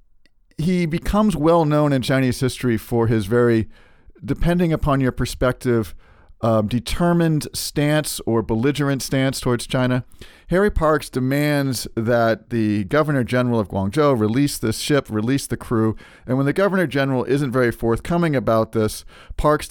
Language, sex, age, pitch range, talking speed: English, male, 50-69, 115-145 Hz, 145 wpm